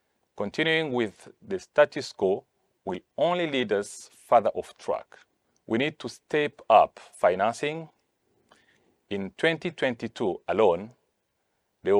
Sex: male